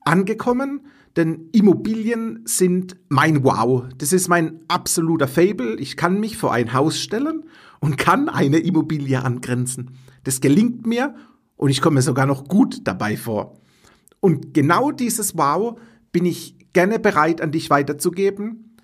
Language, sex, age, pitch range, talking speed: German, male, 50-69, 140-200 Hz, 145 wpm